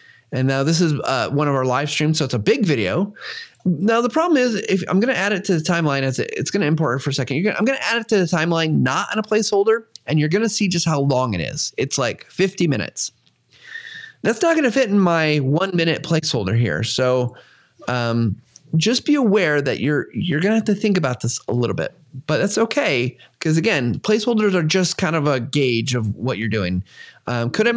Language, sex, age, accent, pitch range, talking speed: English, male, 30-49, American, 125-205 Hz, 225 wpm